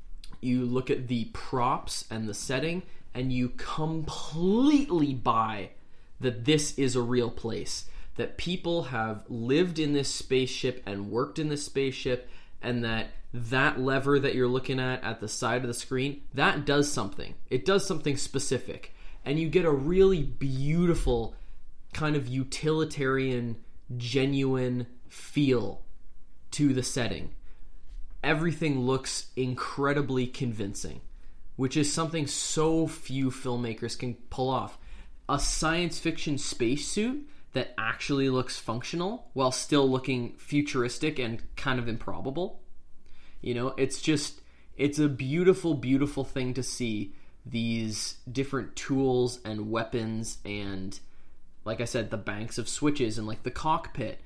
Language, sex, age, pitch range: English, male, 20-39, 110-145 Hz